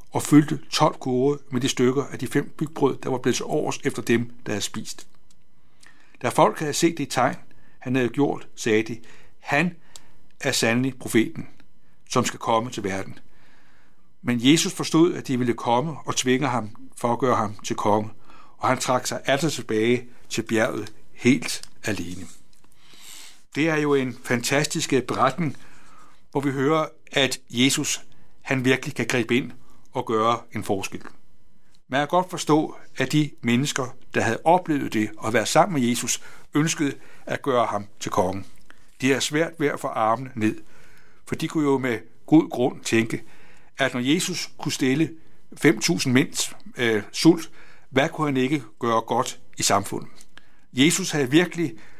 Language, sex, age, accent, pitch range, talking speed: Danish, male, 60-79, native, 120-150 Hz, 170 wpm